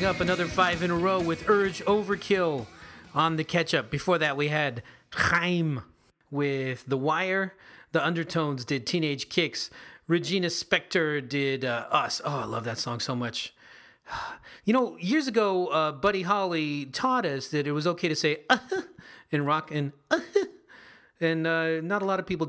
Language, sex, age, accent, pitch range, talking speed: English, male, 30-49, American, 125-170 Hz, 170 wpm